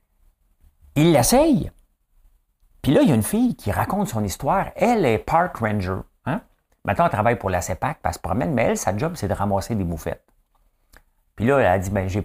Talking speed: 210 wpm